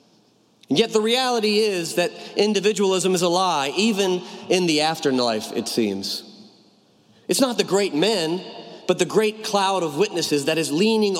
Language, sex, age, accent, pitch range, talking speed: English, male, 40-59, American, 155-195 Hz, 160 wpm